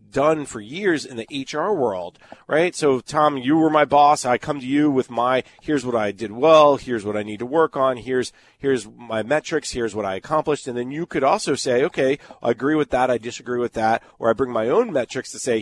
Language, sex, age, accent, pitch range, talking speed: English, male, 40-59, American, 115-150 Hz, 240 wpm